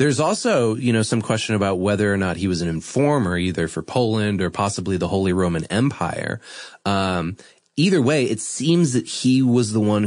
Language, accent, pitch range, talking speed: English, American, 90-115 Hz, 195 wpm